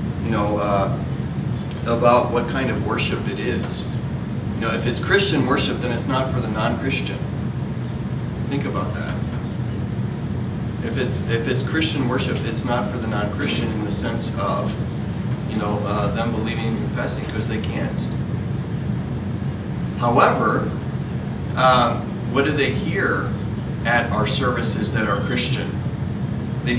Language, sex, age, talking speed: English, male, 30-49, 140 wpm